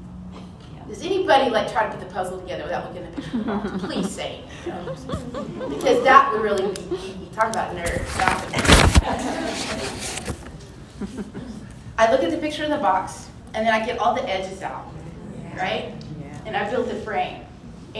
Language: English